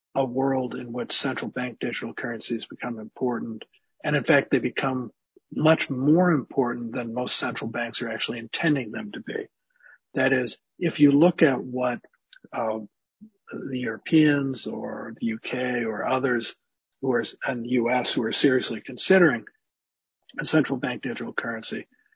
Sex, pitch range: male, 115-140 Hz